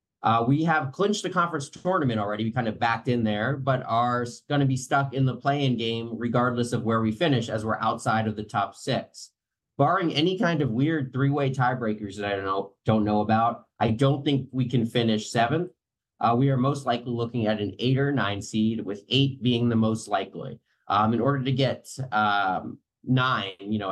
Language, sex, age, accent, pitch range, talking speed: English, male, 30-49, American, 110-135 Hz, 210 wpm